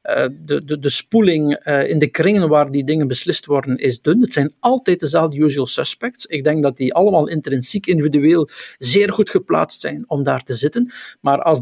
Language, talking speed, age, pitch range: Dutch, 195 wpm, 50-69, 140-195 Hz